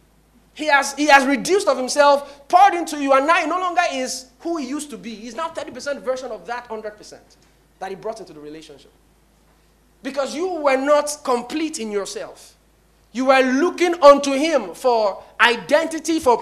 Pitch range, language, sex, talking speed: 230-330 Hz, English, male, 175 wpm